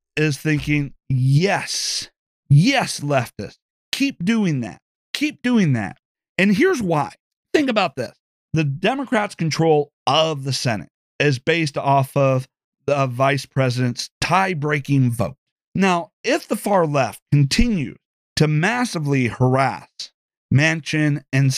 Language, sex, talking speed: English, male, 120 wpm